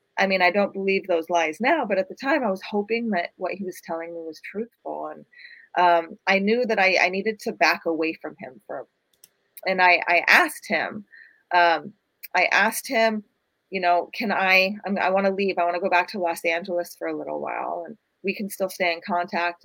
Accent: American